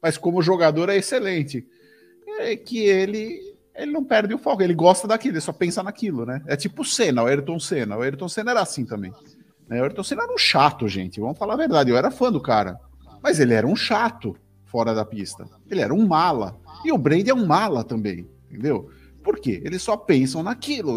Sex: male